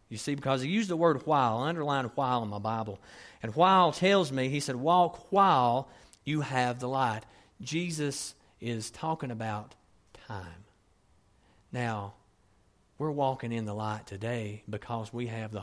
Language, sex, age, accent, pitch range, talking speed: English, male, 40-59, American, 100-135 Hz, 155 wpm